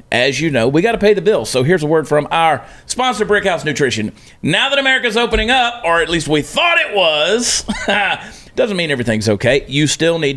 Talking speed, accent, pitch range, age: 215 wpm, American, 120-160 Hz, 40-59